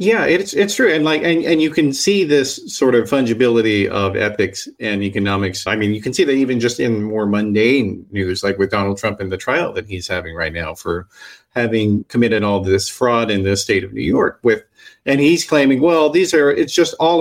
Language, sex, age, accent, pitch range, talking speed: English, male, 40-59, American, 100-145 Hz, 225 wpm